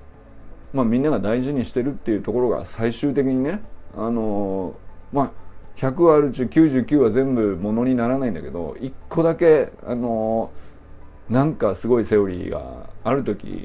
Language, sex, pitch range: Japanese, male, 95-155 Hz